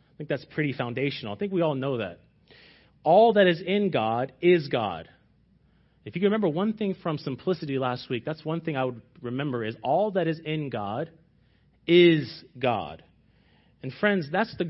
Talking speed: 190 wpm